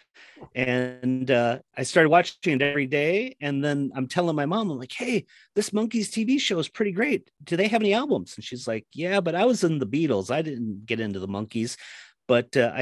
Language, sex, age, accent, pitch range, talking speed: English, male, 40-59, American, 110-145 Hz, 220 wpm